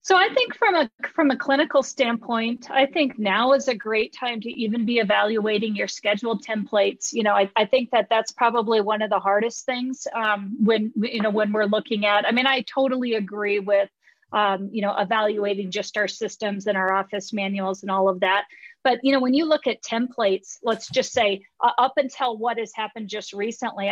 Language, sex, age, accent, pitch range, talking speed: English, female, 40-59, American, 205-235 Hz, 215 wpm